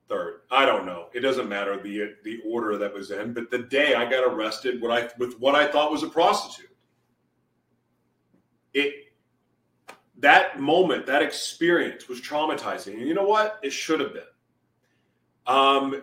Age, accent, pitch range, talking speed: 40-59, American, 120-160 Hz, 160 wpm